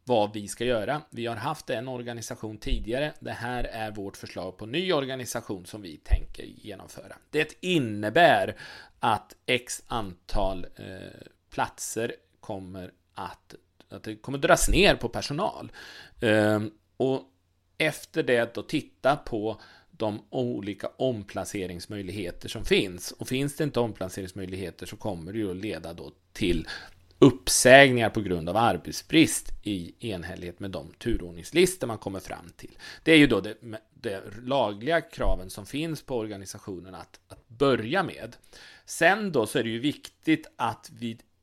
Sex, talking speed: male, 145 wpm